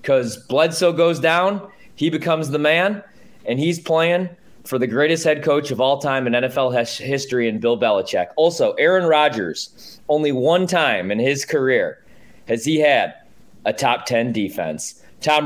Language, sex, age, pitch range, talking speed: English, male, 20-39, 140-195 Hz, 165 wpm